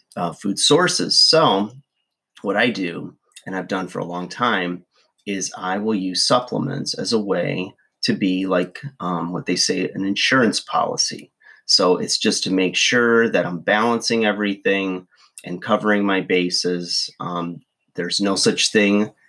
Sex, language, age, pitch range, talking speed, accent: male, English, 30-49, 90-105 Hz, 160 wpm, American